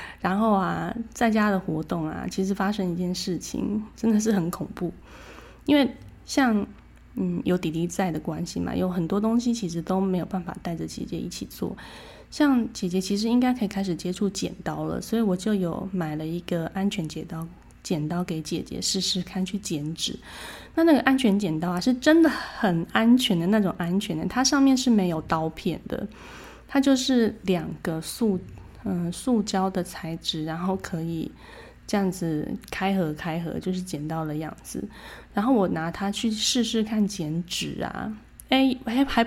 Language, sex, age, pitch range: Chinese, female, 20-39, 175-225 Hz